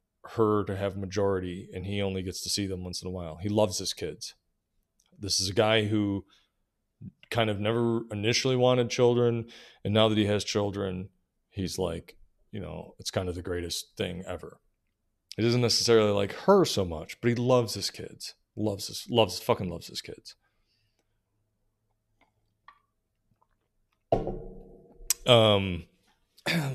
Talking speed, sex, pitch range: 150 wpm, male, 95-115 Hz